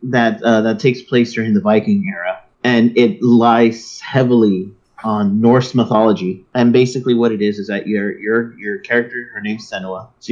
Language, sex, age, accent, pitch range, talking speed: English, male, 30-49, American, 105-130 Hz, 180 wpm